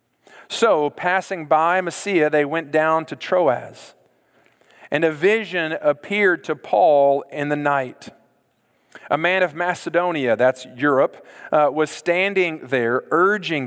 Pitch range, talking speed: 135-170 Hz, 125 wpm